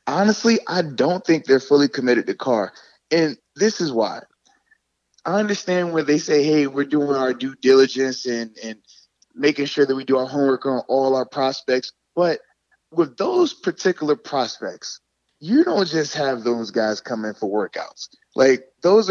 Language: English